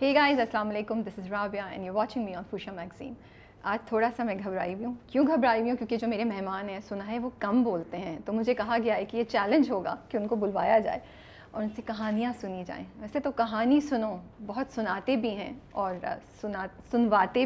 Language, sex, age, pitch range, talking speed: Urdu, female, 30-49, 205-245 Hz, 230 wpm